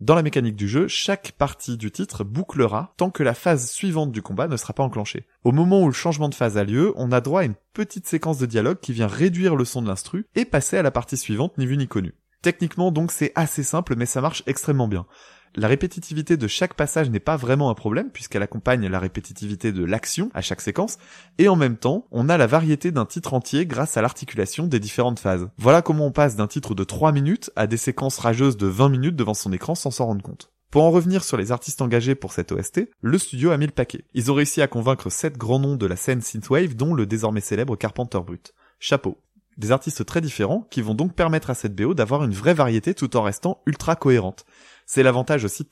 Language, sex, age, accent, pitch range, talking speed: French, male, 20-39, French, 115-160 Hz, 240 wpm